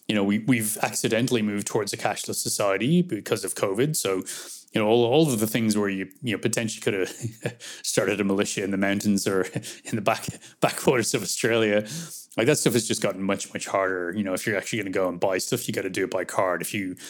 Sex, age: male, 20-39